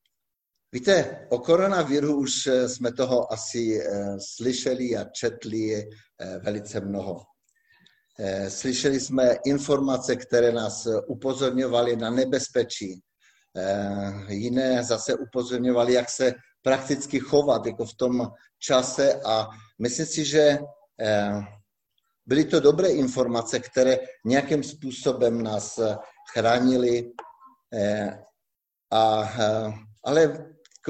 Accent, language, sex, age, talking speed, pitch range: native, Czech, male, 50-69, 90 wpm, 105-135 Hz